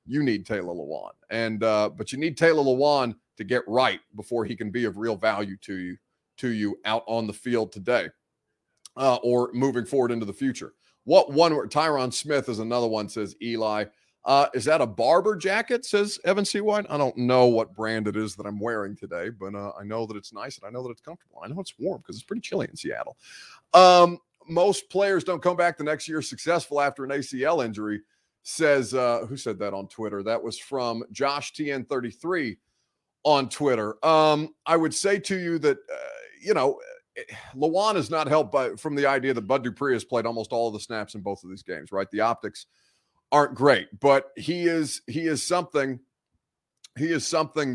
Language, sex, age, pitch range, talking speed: English, male, 30-49, 115-165 Hz, 210 wpm